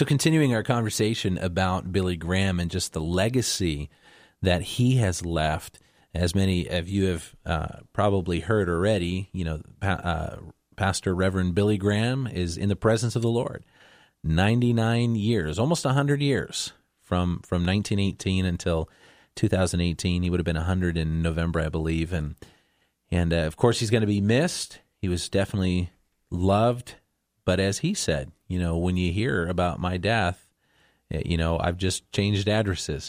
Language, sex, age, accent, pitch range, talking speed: English, male, 30-49, American, 85-105 Hz, 160 wpm